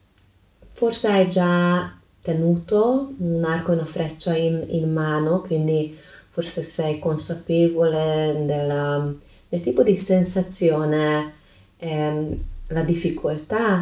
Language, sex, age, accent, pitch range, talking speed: Italian, female, 20-39, native, 150-180 Hz, 110 wpm